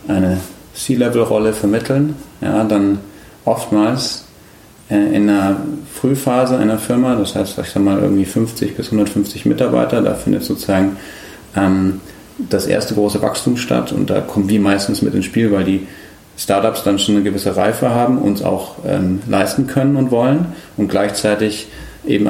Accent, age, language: German, 40-59, German